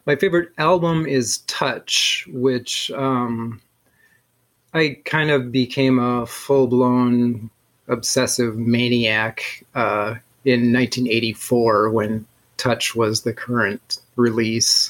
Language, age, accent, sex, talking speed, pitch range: English, 30-49, American, male, 95 wpm, 120-145 Hz